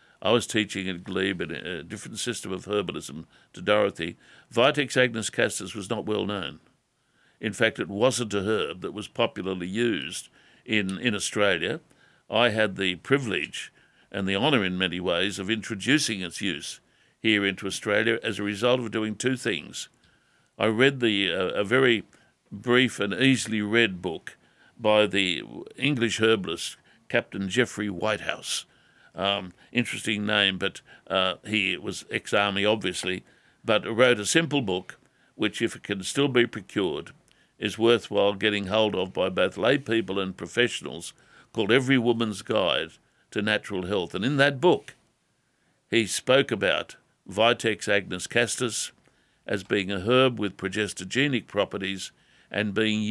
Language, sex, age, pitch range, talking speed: English, male, 60-79, 100-120 Hz, 150 wpm